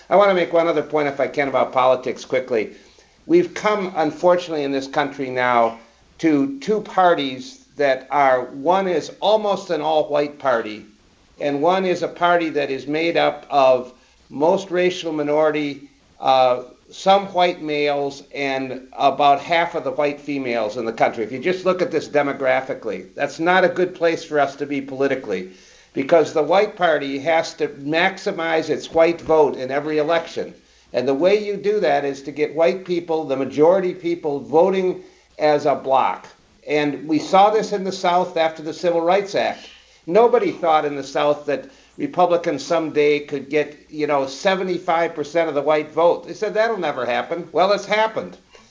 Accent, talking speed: American, 175 wpm